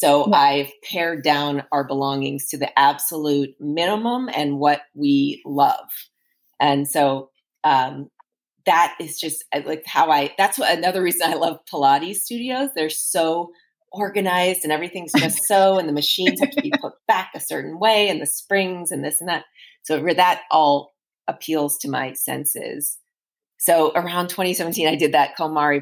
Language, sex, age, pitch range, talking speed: English, female, 30-49, 145-175 Hz, 160 wpm